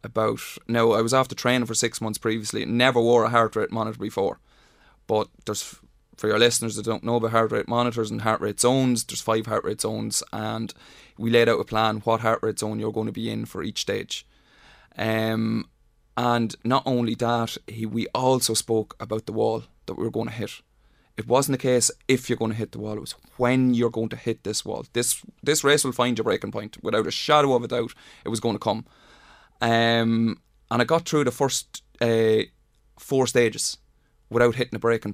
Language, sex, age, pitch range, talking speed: English, male, 20-39, 110-120 Hz, 215 wpm